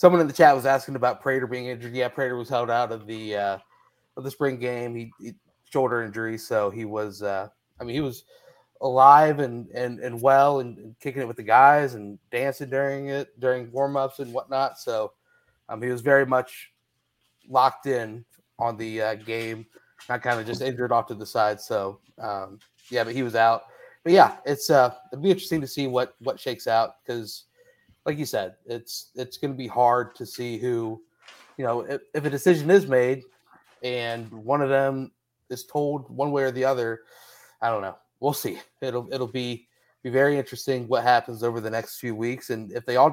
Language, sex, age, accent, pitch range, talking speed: English, male, 30-49, American, 115-140 Hz, 205 wpm